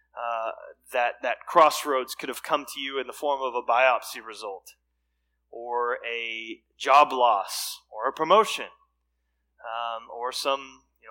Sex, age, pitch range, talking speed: male, 30-49, 125-180 Hz, 145 wpm